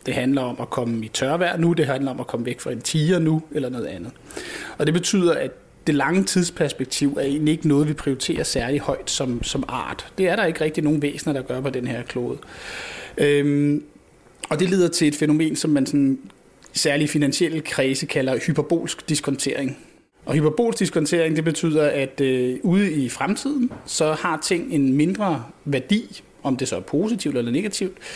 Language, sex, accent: Danish, male, native